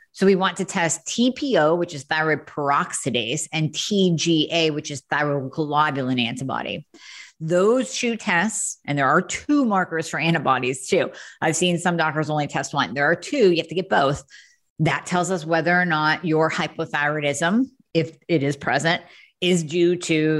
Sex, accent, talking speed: female, American, 170 wpm